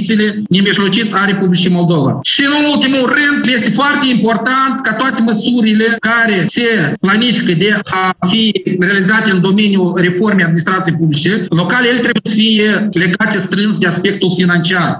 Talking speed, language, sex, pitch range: 145 wpm, Romanian, male, 205-255 Hz